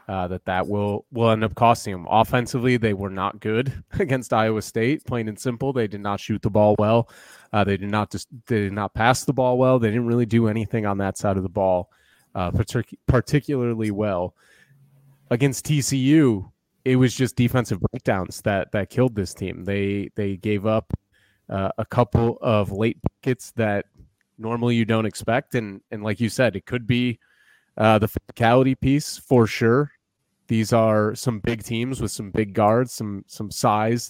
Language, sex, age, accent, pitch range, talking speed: English, male, 20-39, American, 105-125 Hz, 190 wpm